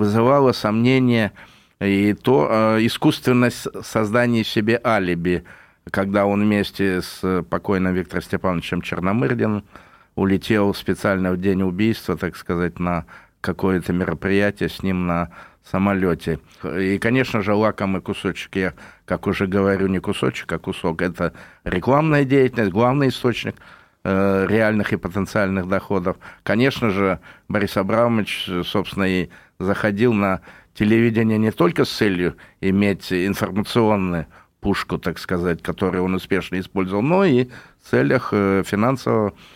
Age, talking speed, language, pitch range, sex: 50-69, 120 wpm, Russian, 95-115 Hz, male